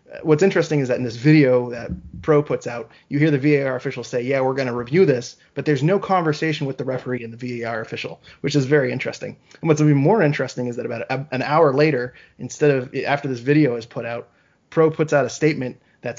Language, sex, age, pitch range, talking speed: English, male, 20-39, 125-150 Hz, 235 wpm